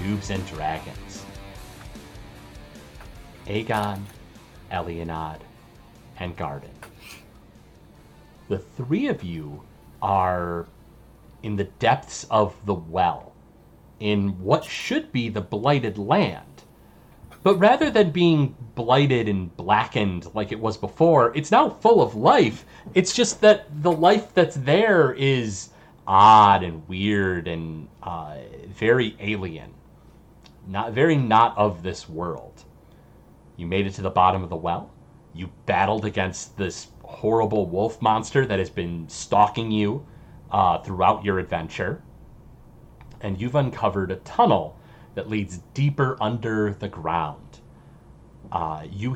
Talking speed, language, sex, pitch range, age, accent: 120 wpm, English, male, 90-120 Hz, 30-49, American